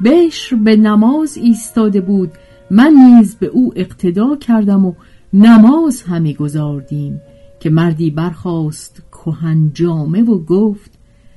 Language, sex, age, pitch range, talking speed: Persian, female, 50-69, 165-240 Hz, 115 wpm